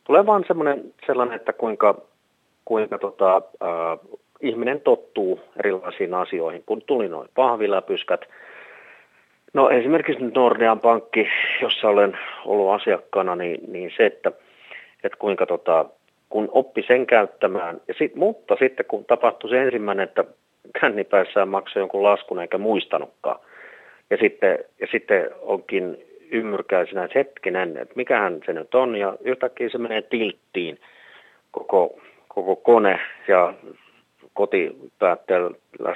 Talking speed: 125 wpm